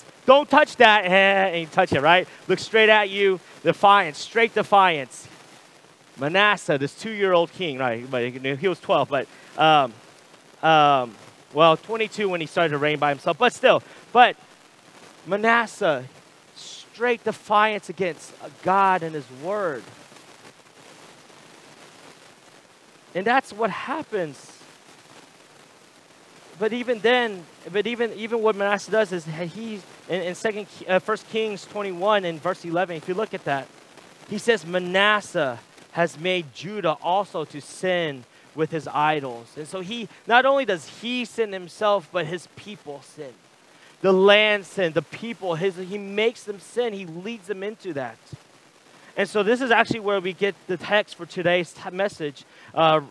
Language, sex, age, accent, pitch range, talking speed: English, male, 30-49, American, 165-210 Hz, 150 wpm